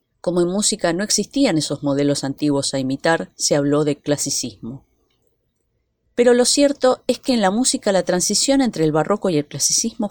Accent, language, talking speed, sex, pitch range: Argentinian, Spanish, 180 wpm, female, 140-205 Hz